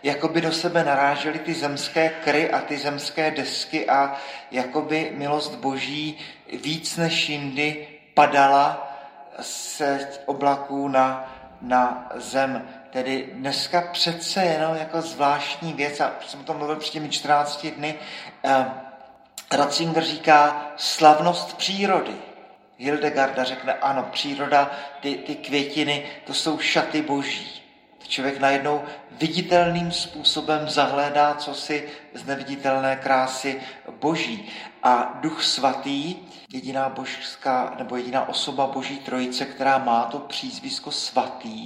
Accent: native